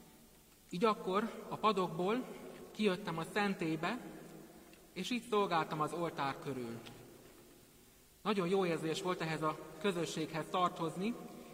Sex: male